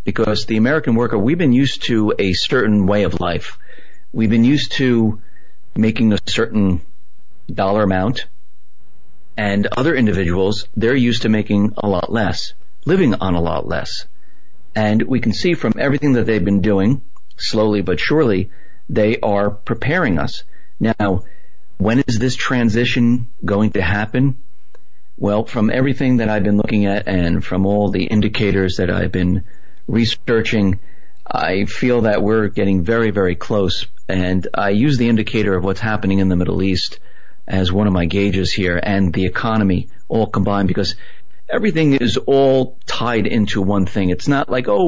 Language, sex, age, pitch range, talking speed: English, male, 50-69, 100-120 Hz, 165 wpm